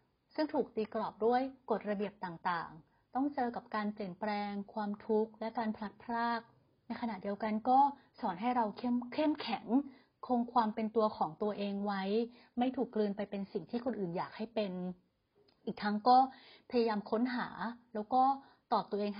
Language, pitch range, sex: Thai, 205-250 Hz, female